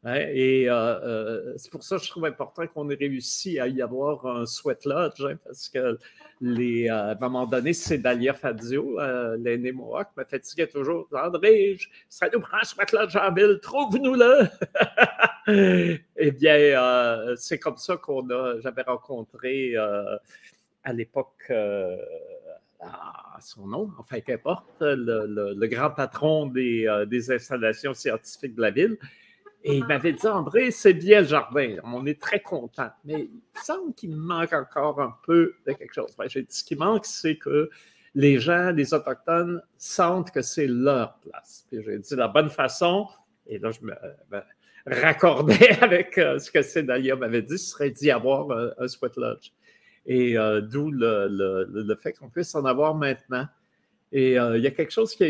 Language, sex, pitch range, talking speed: French, male, 125-175 Hz, 190 wpm